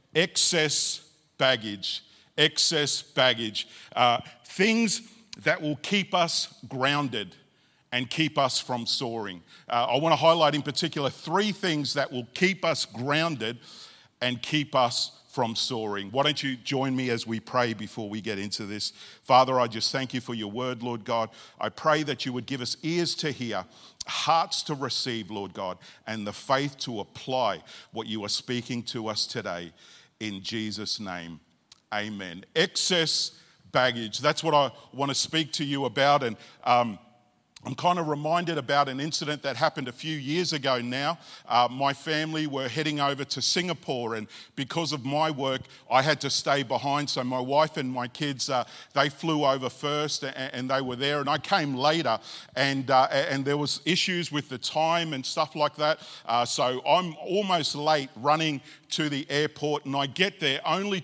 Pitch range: 125-155 Hz